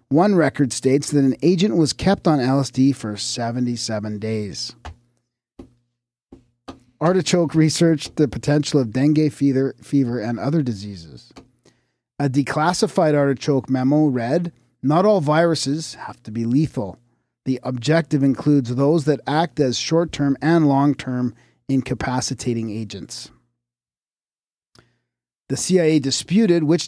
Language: English